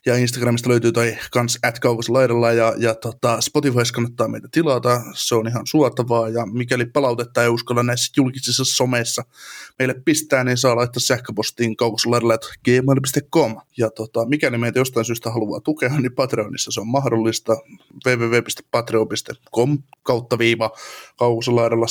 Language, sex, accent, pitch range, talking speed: Finnish, male, native, 115-130 Hz, 140 wpm